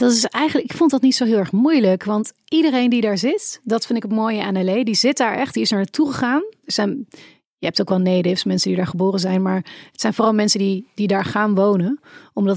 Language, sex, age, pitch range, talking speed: Dutch, female, 30-49, 190-235 Hz, 265 wpm